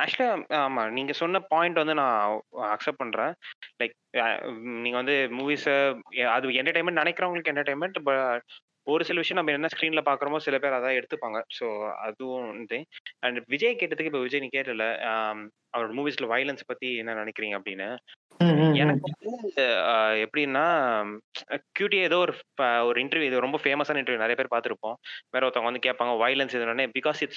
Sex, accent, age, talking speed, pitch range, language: male, native, 20-39, 145 wpm, 120-160 Hz, Tamil